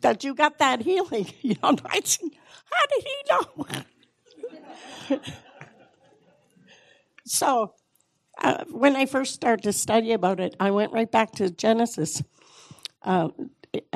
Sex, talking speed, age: female, 120 wpm, 60-79